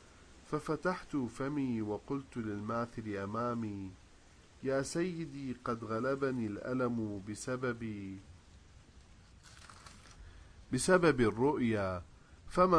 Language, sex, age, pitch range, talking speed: English, male, 40-59, 95-135 Hz, 65 wpm